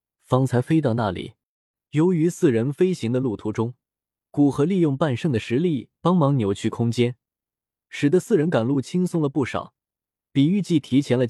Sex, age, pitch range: male, 20-39, 115-165 Hz